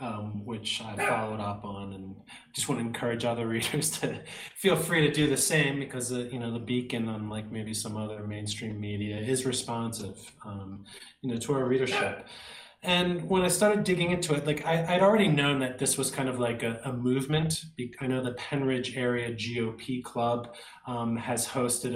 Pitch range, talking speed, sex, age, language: 115-135 Hz, 195 wpm, male, 20-39, English